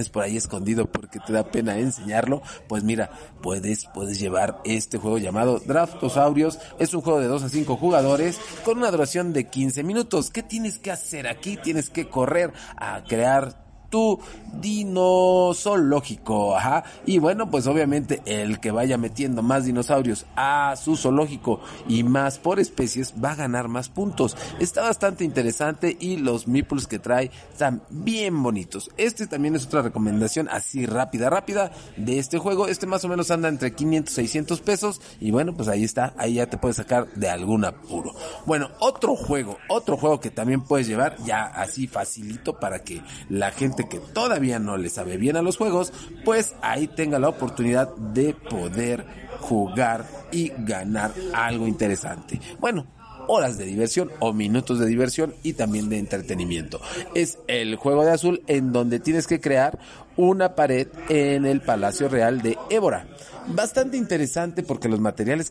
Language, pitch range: Spanish, 115-165 Hz